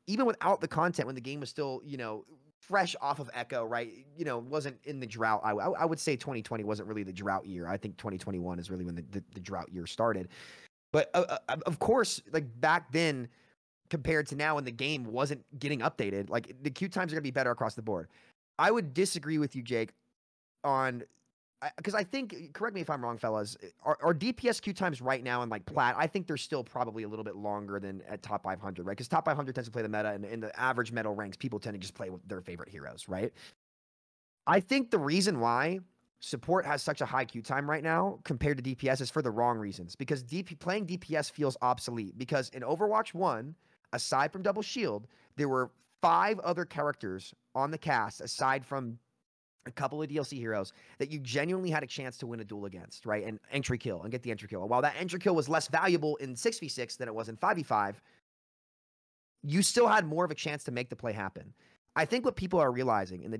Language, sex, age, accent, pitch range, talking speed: English, male, 30-49, American, 110-160 Hz, 230 wpm